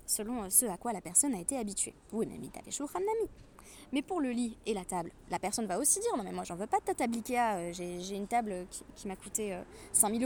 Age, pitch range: 20-39, 200-260 Hz